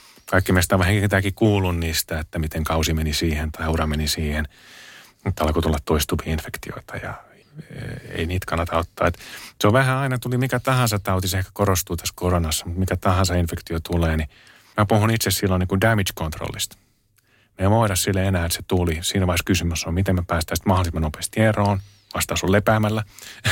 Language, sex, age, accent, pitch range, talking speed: Finnish, male, 30-49, native, 85-100 Hz, 185 wpm